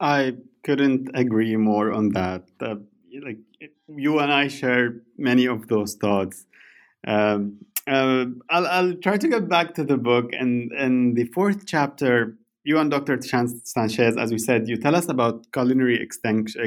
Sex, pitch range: male, 115-145 Hz